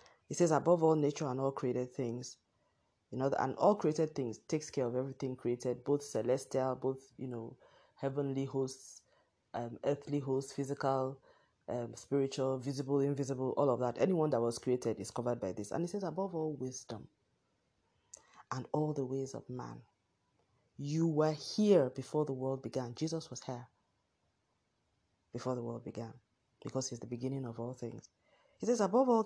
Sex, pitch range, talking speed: female, 125-155 Hz, 170 wpm